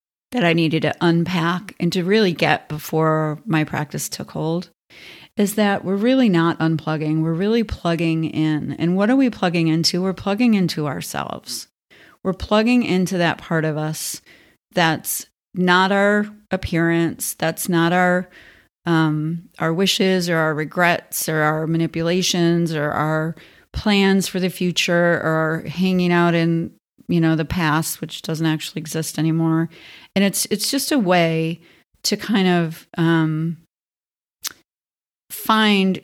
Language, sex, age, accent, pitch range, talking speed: English, female, 40-59, American, 160-200 Hz, 145 wpm